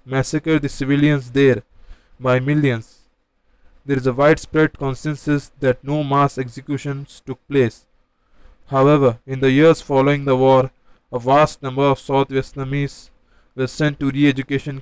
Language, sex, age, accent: English, male, 20-39, Indian